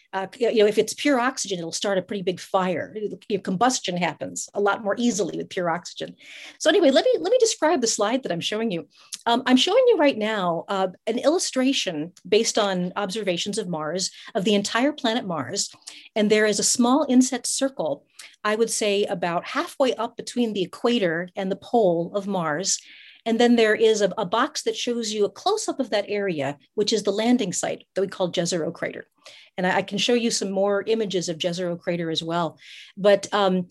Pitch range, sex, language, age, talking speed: 190-240 Hz, female, English, 40-59, 210 wpm